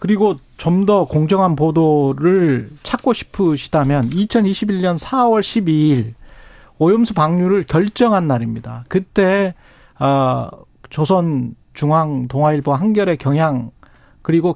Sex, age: male, 40-59